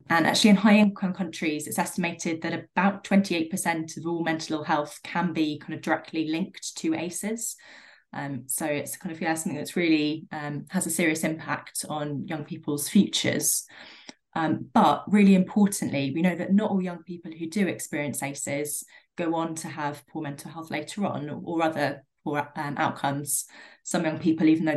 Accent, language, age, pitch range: British, English, 20-39, 150-180 Hz